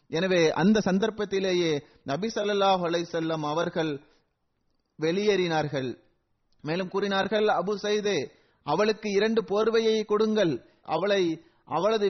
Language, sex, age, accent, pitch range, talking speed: Tamil, male, 30-49, native, 175-215 Hz, 75 wpm